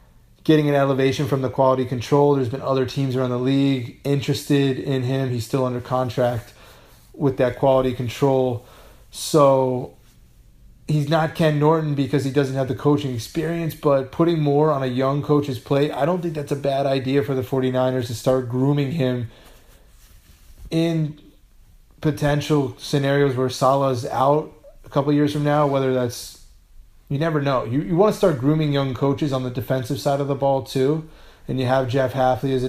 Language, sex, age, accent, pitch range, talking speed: English, male, 20-39, American, 125-145 Hz, 180 wpm